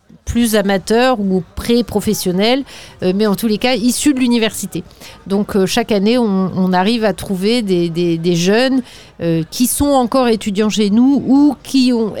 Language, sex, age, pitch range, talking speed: French, female, 40-59, 185-230 Hz, 155 wpm